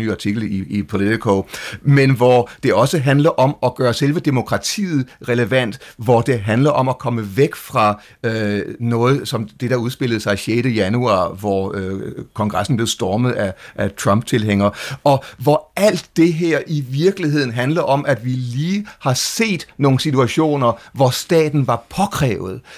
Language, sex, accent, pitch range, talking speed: Danish, male, native, 120-150 Hz, 160 wpm